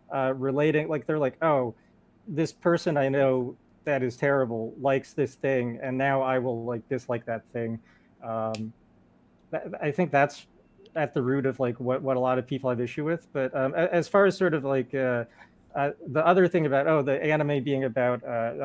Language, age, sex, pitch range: English, 30-49, male, 125-150 Hz